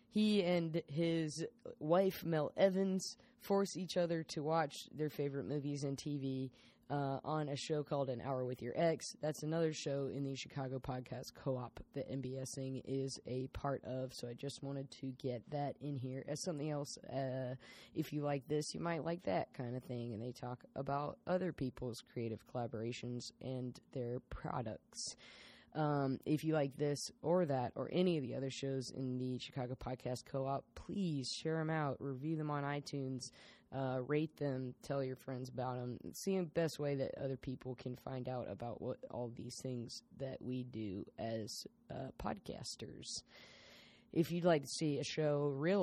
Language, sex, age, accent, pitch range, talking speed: English, female, 20-39, American, 130-150 Hz, 180 wpm